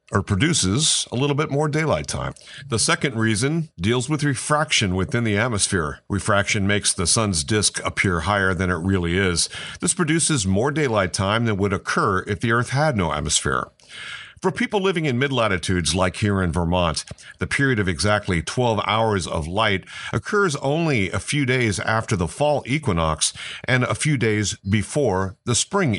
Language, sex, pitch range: English, male, 95-135 Hz